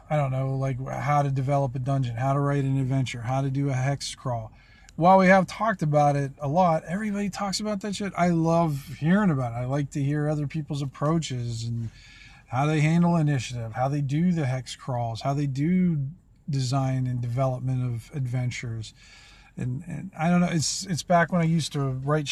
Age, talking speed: 40-59, 205 wpm